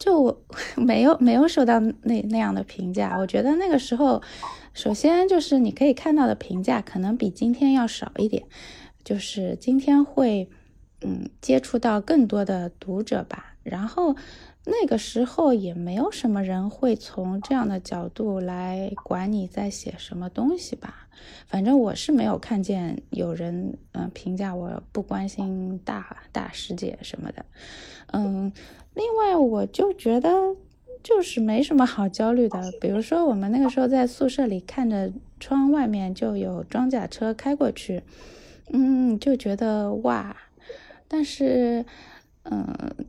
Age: 20-39